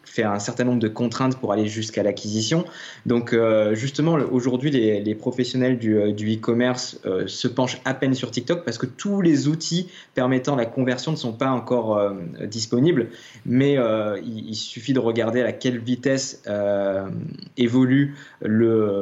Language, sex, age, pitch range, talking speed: French, male, 20-39, 110-130 Hz, 165 wpm